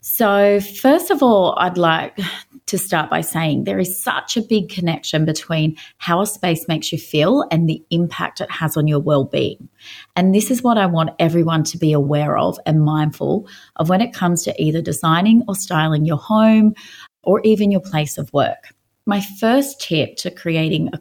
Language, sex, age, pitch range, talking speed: English, female, 30-49, 160-215 Hz, 190 wpm